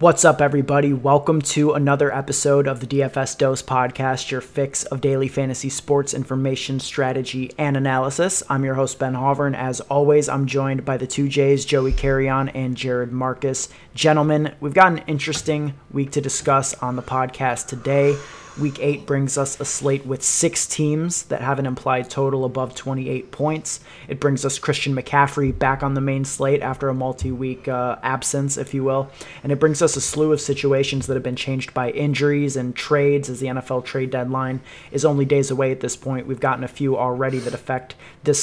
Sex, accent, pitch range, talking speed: male, American, 130-140 Hz, 190 wpm